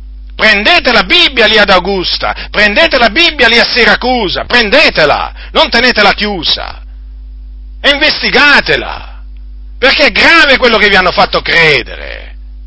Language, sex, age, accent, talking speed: Italian, male, 50-69, native, 130 wpm